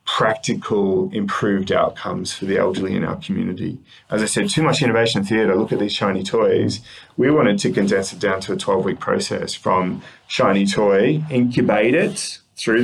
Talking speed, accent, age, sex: 180 wpm, Australian, 20-39, male